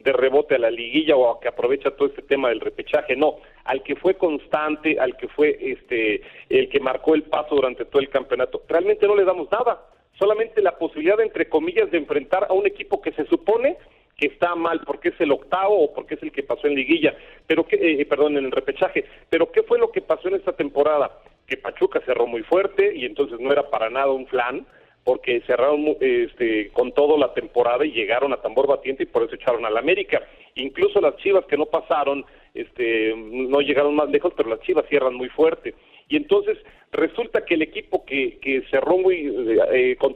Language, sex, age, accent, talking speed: Spanish, male, 40-59, Mexican, 210 wpm